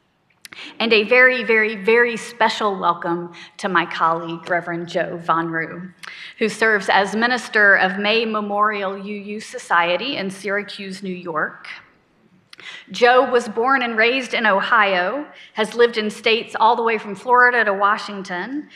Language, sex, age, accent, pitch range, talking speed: English, female, 40-59, American, 185-250 Hz, 145 wpm